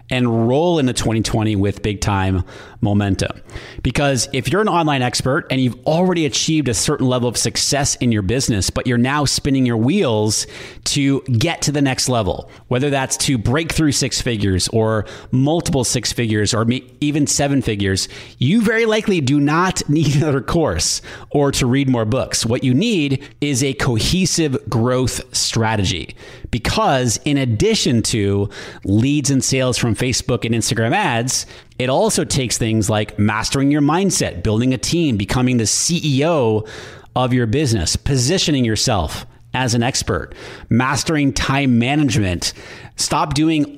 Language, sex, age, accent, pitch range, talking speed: English, male, 30-49, American, 110-145 Hz, 155 wpm